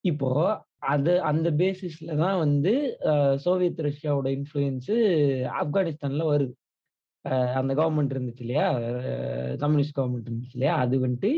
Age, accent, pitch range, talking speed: 20-39, native, 135-180 Hz, 110 wpm